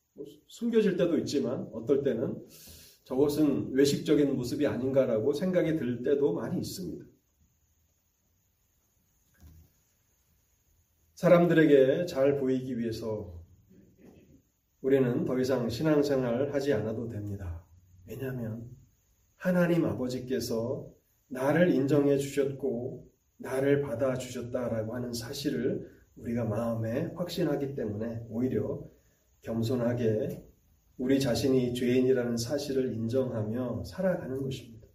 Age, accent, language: 30-49, native, Korean